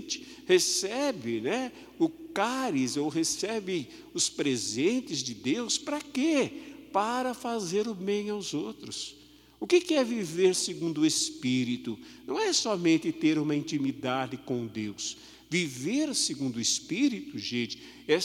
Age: 50-69